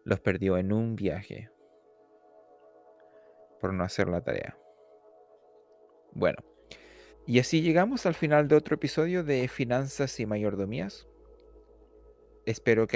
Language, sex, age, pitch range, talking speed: Spanish, male, 30-49, 105-140 Hz, 115 wpm